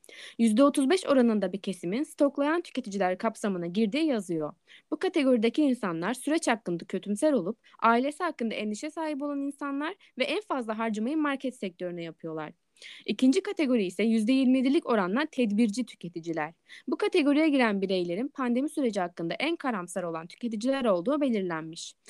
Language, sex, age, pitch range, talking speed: Turkish, female, 20-39, 195-285 Hz, 135 wpm